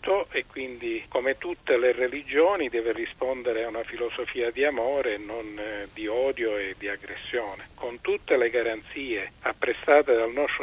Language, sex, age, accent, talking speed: Italian, male, 50-69, native, 150 wpm